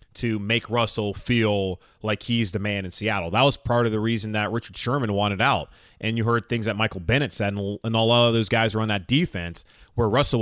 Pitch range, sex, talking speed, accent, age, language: 105-125 Hz, male, 235 wpm, American, 20-39, English